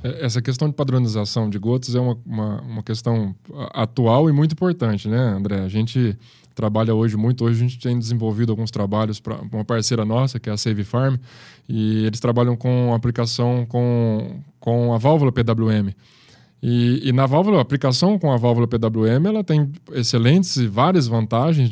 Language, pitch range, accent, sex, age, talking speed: Portuguese, 115-135 Hz, Brazilian, male, 10-29, 180 wpm